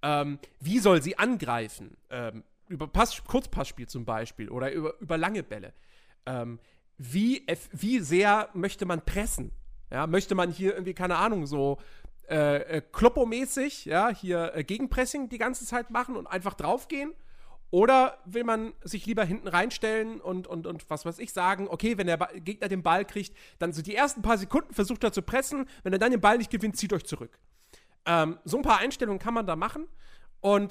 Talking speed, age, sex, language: 190 wpm, 40-59, male, German